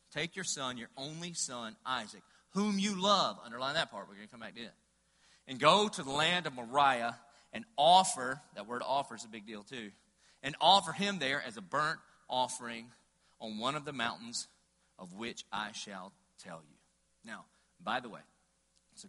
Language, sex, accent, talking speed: English, male, American, 190 wpm